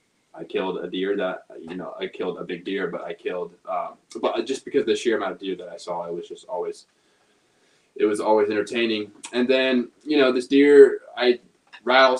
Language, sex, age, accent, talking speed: English, male, 20-39, American, 210 wpm